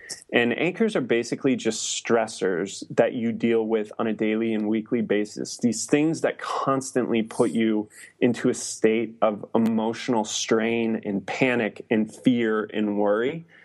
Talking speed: 150 wpm